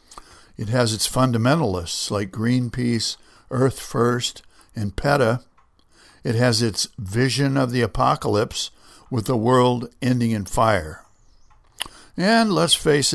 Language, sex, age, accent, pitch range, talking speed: English, male, 60-79, American, 105-130 Hz, 120 wpm